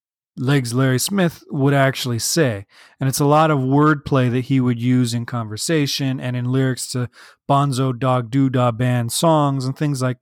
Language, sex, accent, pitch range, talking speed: English, male, American, 120-150 Hz, 175 wpm